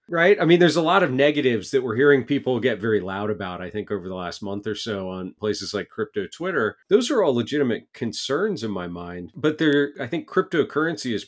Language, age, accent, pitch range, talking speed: English, 40-59, American, 105-135 Hz, 225 wpm